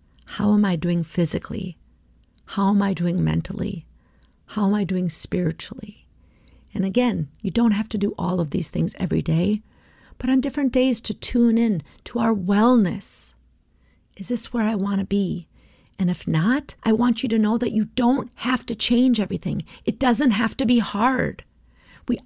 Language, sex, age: English, female, 40-59